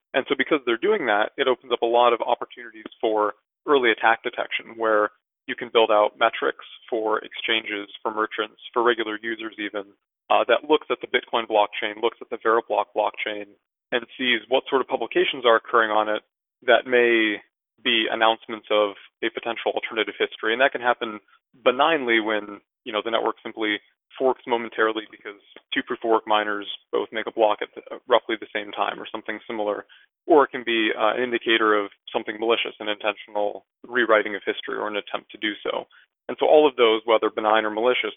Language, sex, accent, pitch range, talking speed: English, male, American, 105-115 Hz, 195 wpm